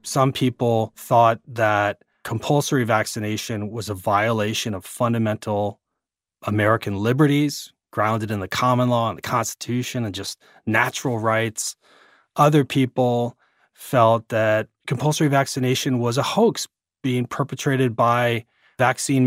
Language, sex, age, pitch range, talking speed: English, male, 30-49, 115-140 Hz, 120 wpm